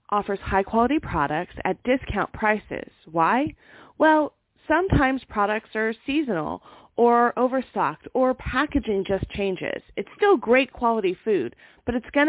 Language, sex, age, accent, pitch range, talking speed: English, female, 30-49, American, 195-255 Hz, 125 wpm